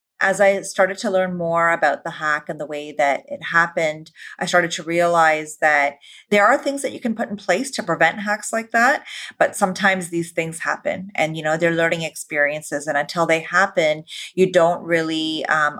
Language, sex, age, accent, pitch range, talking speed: English, female, 30-49, American, 155-185 Hz, 200 wpm